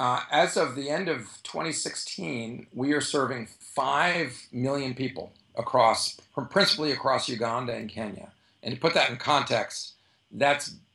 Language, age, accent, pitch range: English, 50-69, American, 115-140 Hz